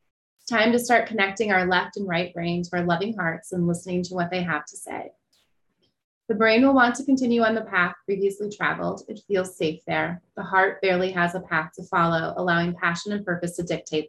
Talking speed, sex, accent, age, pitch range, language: 215 wpm, female, American, 30-49, 180-225 Hz, English